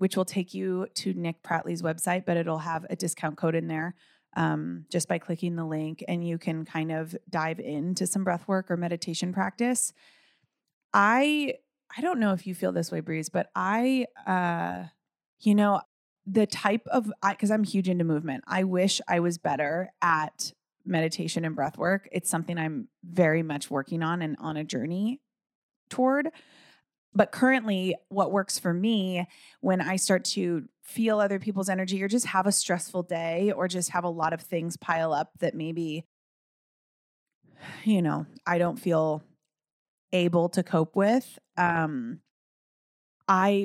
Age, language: 20-39, English